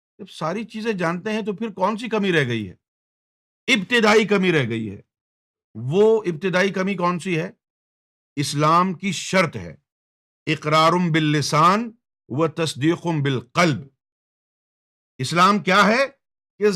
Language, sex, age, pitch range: Urdu, male, 50-69, 150-215 Hz